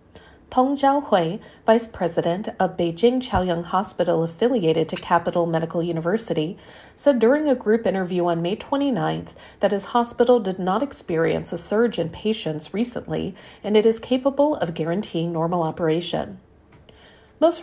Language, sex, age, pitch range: Chinese, female, 40-59, 165-230 Hz